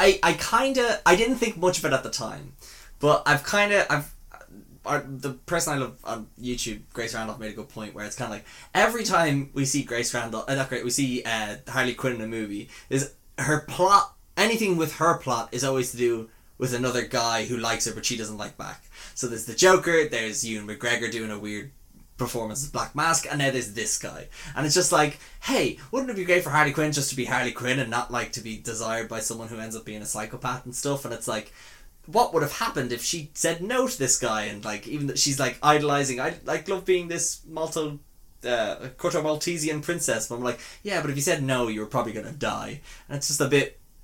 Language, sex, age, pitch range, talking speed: English, male, 10-29, 115-155 Hz, 240 wpm